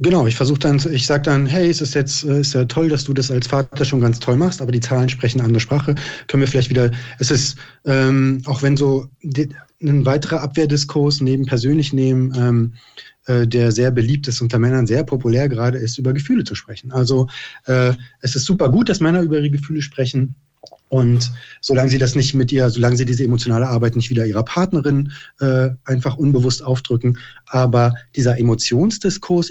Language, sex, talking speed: German, male, 195 wpm